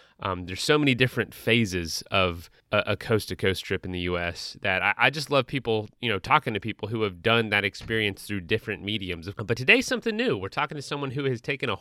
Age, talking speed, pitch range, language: 30-49, 230 wpm, 95-130 Hz, English